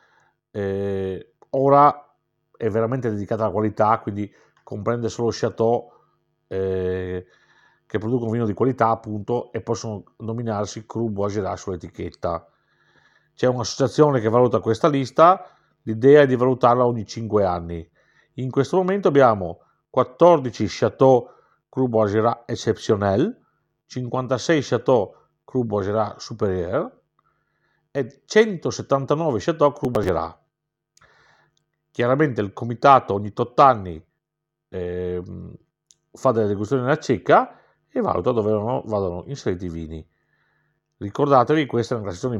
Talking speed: 110 wpm